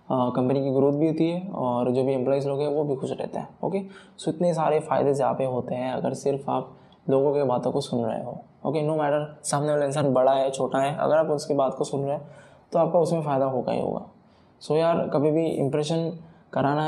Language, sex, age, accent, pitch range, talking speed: Hindi, male, 20-39, native, 135-155 Hz, 250 wpm